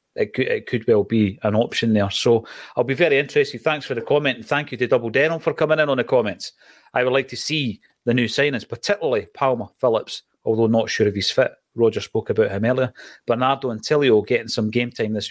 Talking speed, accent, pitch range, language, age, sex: 230 wpm, British, 110-125 Hz, English, 30-49, male